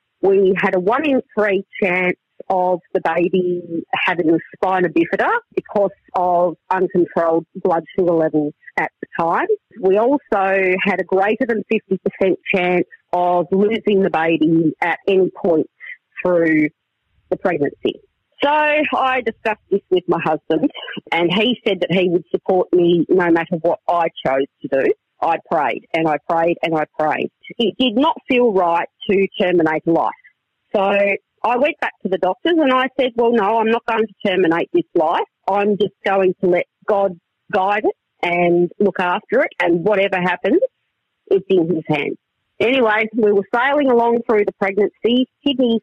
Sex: female